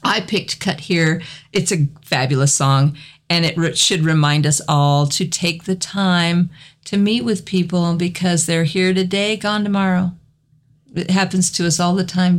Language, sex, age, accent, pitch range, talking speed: English, female, 50-69, American, 145-180 Hz, 170 wpm